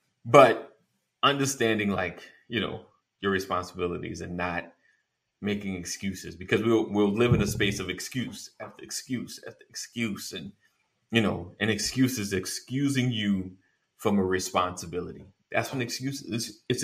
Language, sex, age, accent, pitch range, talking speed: English, male, 30-49, American, 95-115 Hz, 145 wpm